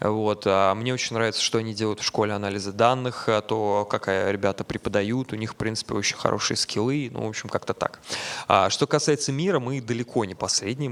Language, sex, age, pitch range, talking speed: Russian, male, 20-39, 105-130 Hz, 185 wpm